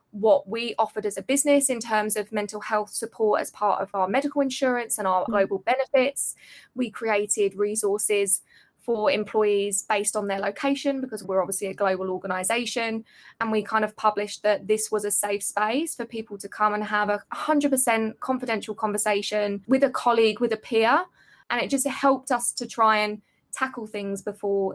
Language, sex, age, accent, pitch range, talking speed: English, female, 20-39, British, 205-245 Hz, 180 wpm